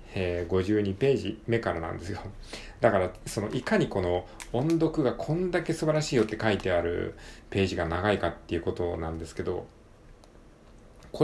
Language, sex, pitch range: Japanese, male, 90-145 Hz